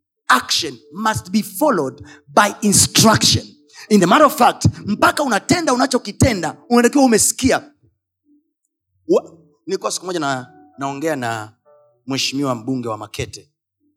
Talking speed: 110 wpm